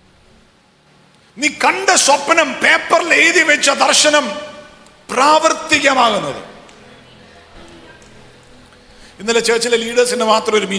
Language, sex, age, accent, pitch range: English, male, 50-69, Indian, 150-205 Hz